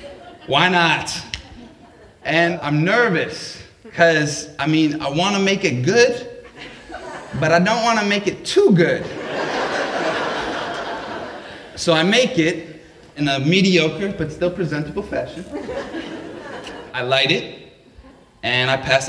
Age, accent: 20-39, American